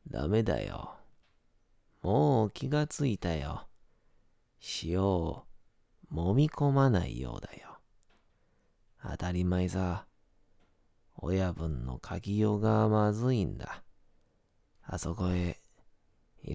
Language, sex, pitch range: Japanese, male, 85-110 Hz